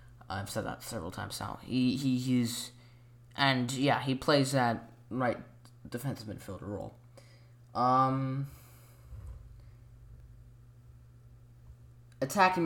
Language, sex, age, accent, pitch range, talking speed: English, male, 10-29, American, 120-140 Hz, 95 wpm